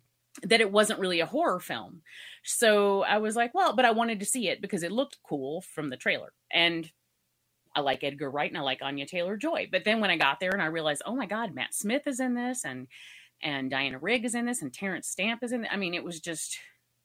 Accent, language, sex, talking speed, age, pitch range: American, English, female, 250 wpm, 30-49, 155-235 Hz